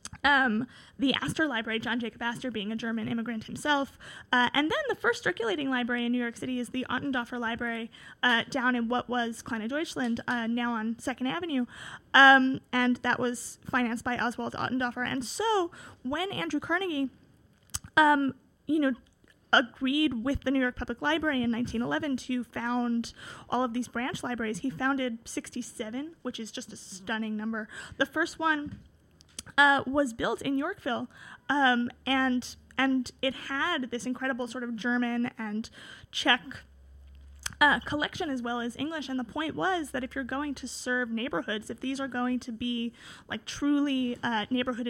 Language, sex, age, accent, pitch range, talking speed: English, female, 30-49, American, 235-270 Hz, 170 wpm